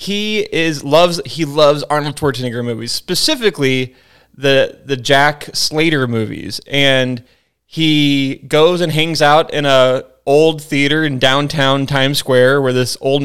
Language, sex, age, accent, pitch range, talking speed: English, male, 20-39, American, 130-155 Hz, 140 wpm